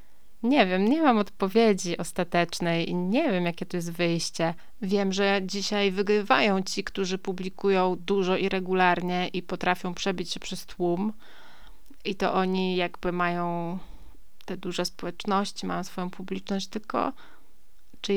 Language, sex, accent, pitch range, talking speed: Polish, female, native, 180-215 Hz, 140 wpm